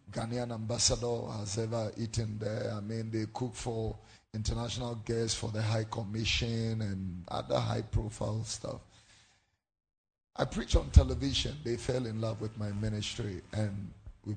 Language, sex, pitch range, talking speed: English, male, 100-120 Hz, 145 wpm